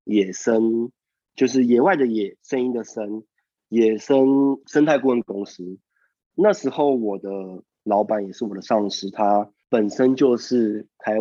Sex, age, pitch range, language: male, 20-39, 100-125 Hz, Chinese